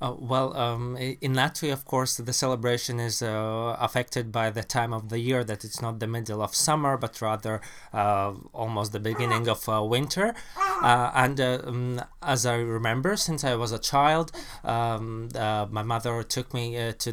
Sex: male